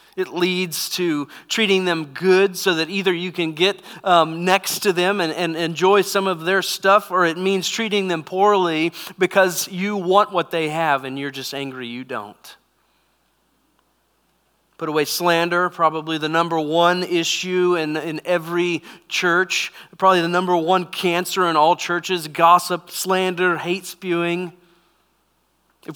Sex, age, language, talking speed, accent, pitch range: male, 40-59, English, 155 wpm, American, 160-195 Hz